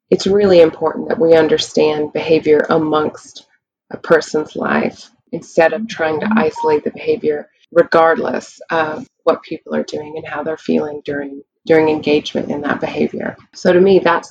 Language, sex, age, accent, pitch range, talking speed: English, female, 20-39, American, 155-175 Hz, 160 wpm